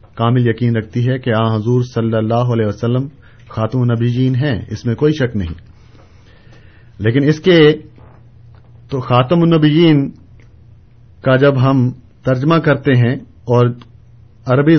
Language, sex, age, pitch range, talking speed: Urdu, male, 50-69, 110-140 Hz, 135 wpm